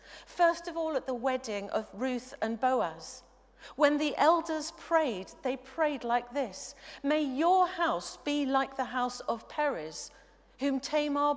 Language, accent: English, British